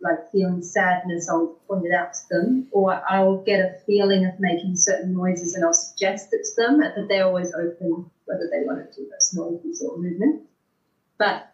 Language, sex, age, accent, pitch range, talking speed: English, female, 30-49, Australian, 185-220 Hz, 200 wpm